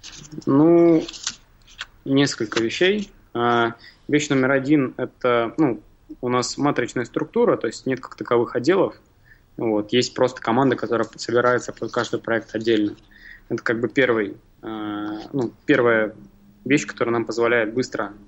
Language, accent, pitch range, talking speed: Russian, native, 110-130 Hz, 130 wpm